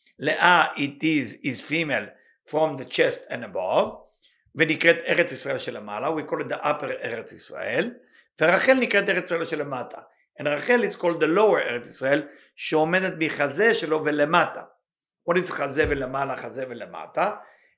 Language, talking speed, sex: English, 110 wpm, male